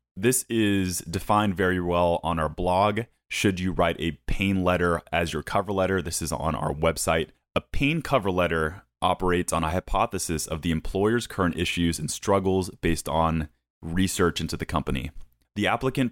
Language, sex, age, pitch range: English, male, 30-49, 80-100 Hz